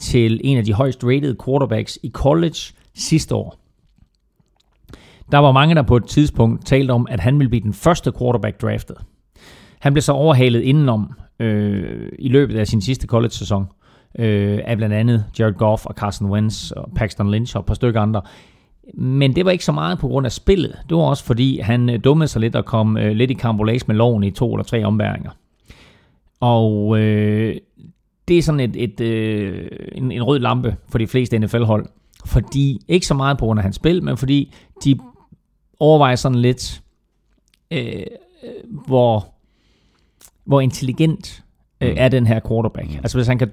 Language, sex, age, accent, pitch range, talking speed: Danish, male, 30-49, native, 110-135 Hz, 180 wpm